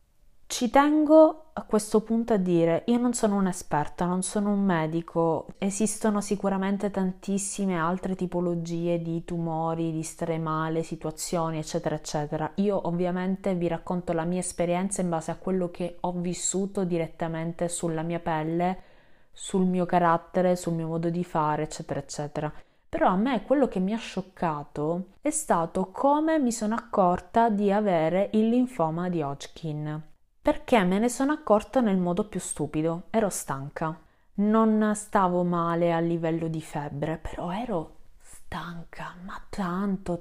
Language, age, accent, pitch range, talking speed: Italian, 20-39, native, 165-205 Hz, 150 wpm